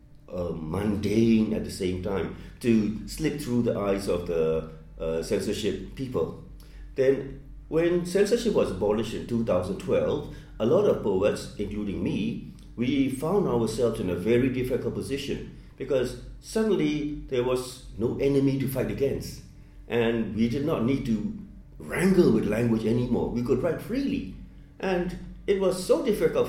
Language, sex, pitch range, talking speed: Dutch, male, 95-140 Hz, 145 wpm